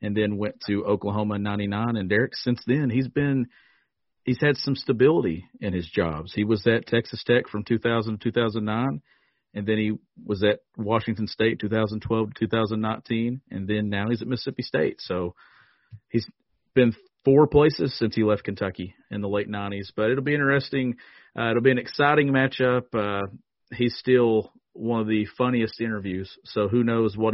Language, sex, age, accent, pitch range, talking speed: English, male, 40-59, American, 105-125 Hz, 180 wpm